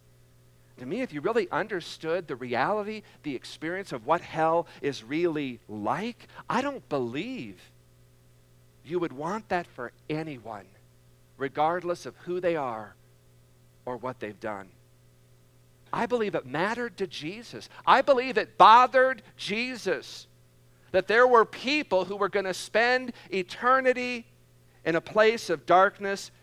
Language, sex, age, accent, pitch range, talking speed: English, male, 50-69, American, 130-210 Hz, 135 wpm